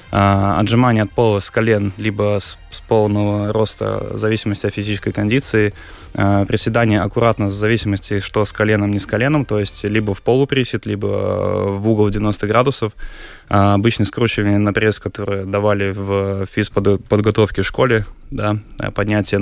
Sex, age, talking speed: male, 20-39, 145 wpm